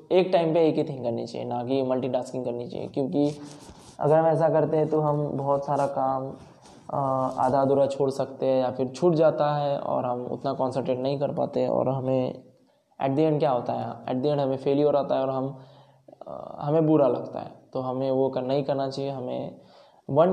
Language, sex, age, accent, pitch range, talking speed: Hindi, male, 20-39, native, 130-150 Hz, 210 wpm